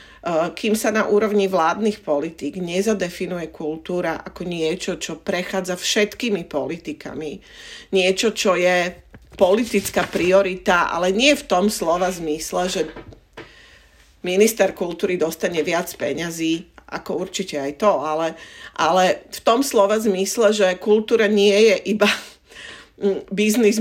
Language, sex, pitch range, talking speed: Slovak, female, 170-210 Hz, 120 wpm